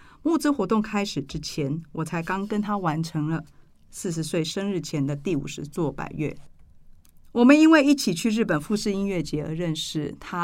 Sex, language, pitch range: female, Chinese, 150-195 Hz